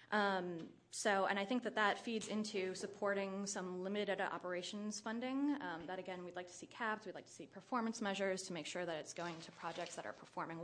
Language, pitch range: English, 170-200 Hz